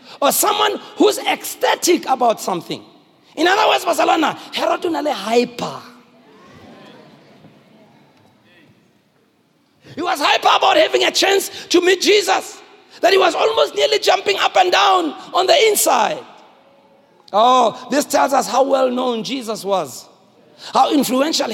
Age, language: 40-59, English